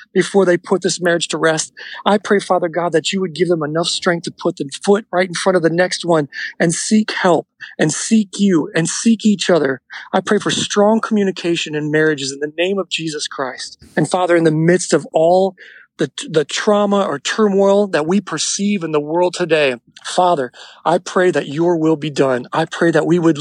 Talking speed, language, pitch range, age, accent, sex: 215 wpm, English, 160-195 Hz, 40-59, American, male